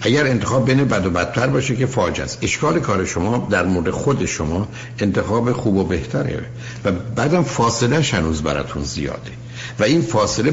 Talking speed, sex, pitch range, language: 170 wpm, male, 95-125 Hz, Persian